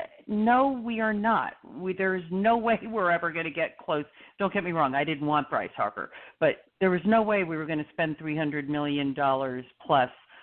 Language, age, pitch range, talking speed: English, 50-69, 135-165 Hz, 205 wpm